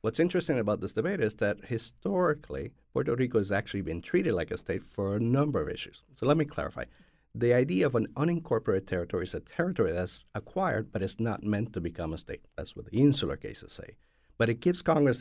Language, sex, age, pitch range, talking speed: English, male, 50-69, 105-140 Hz, 215 wpm